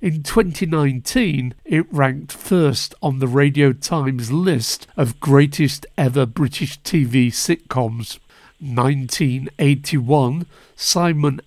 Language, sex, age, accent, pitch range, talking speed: English, male, 50-69, British, 130-165 Hz, 95 wpm